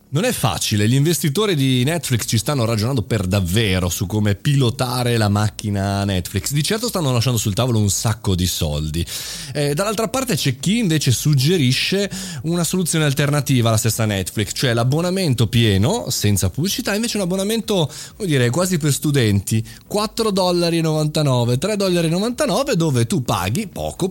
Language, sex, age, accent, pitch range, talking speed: Italian, male, 30-49, native, 105-165 Hz, 155 wpm